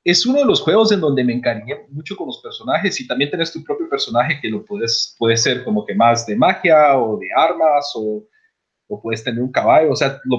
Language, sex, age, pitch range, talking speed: Spanish, male, 30-49, 120-180 Hz, 235 wpm